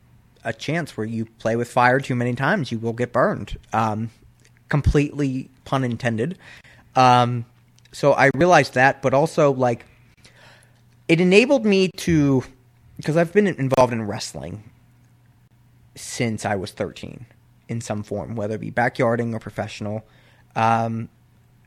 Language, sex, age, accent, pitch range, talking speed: English, male, 20-39, American, 115-135 Hz, 140 wpm